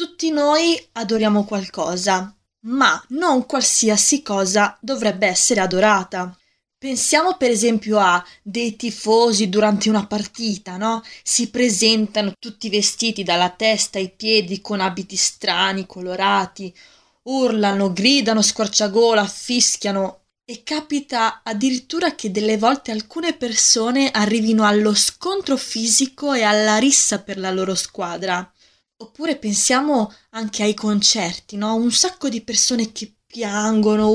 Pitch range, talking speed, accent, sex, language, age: 205-265 Hz, 120 wpm, native, female, Italian, 20-39